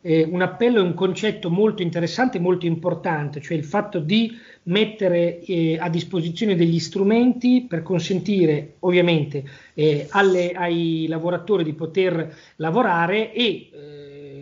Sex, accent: male, native